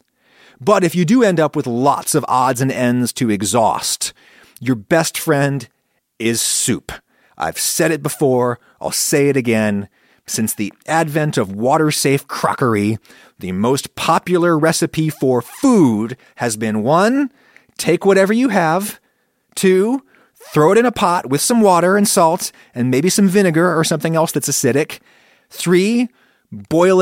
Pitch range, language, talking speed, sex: 130-190 Hz, English, 150 wpm, male